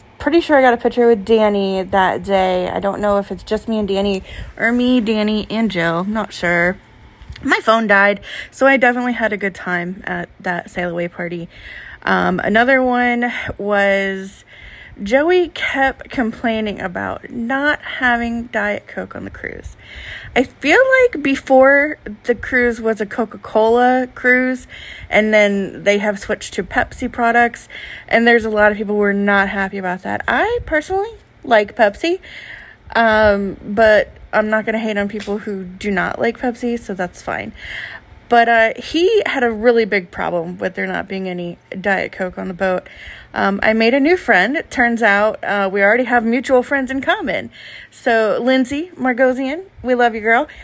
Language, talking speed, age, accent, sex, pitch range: English, 175 wpm, 20-39, American, female, 200-250 Hz